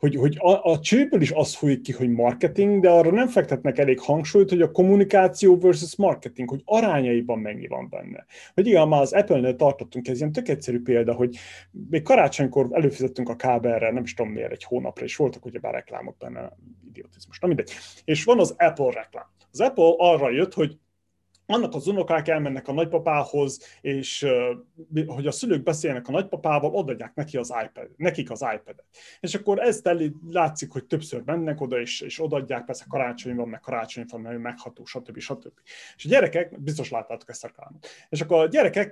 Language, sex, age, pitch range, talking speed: Hungarian, male, 30-49, 130-185 Hz, 185 wpm